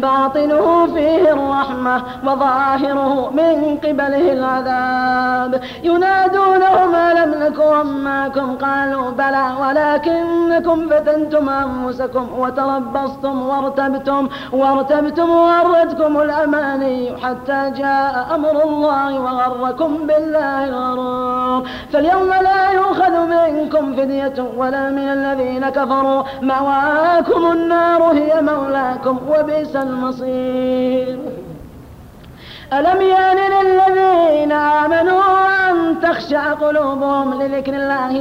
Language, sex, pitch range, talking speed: Arabic, female, 265-310 Hz, 80 wpm